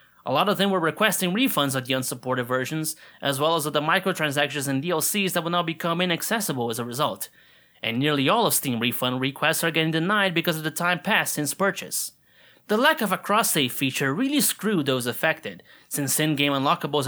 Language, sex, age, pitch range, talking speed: English, male, 20-39, 135-185 Hz, 200 wpm